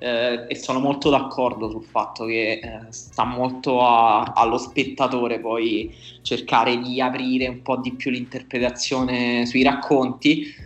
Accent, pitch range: native, 125-140 Hz